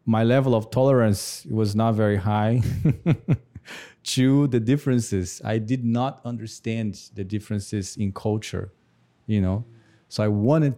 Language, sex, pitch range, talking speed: English, male, 100-125 Hz, 135 wpm